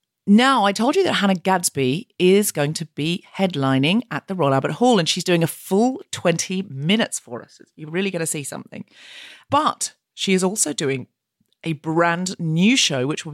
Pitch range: 150-200 Hz